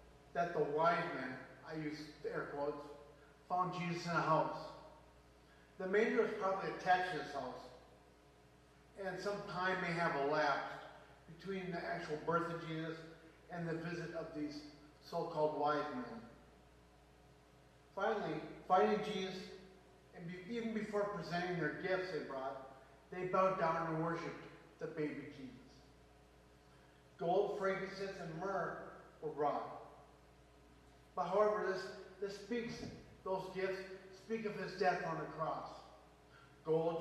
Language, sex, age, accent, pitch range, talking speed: English, male, 50-69, American, 150-190 Hz, 130 wpm